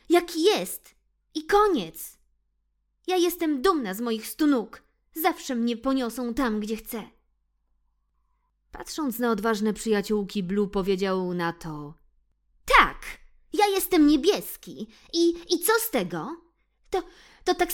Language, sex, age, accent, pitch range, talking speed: Polish, female, 20-39, native, 190-320 Hz, 120 wpm